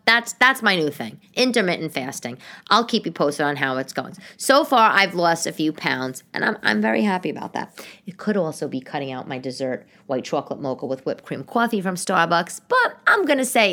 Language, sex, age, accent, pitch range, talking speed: English, female, 30-49, American, 140-200 Hz, 225 wpm